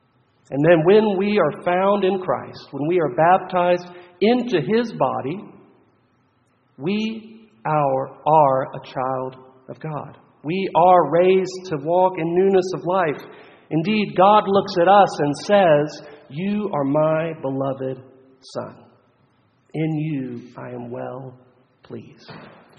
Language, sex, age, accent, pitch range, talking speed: English, male, 50-69, American, 130-180 Hz, 130 wpm